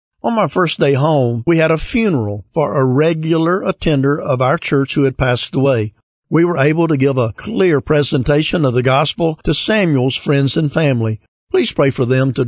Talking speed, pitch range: 195 wpm, 130-165 Hz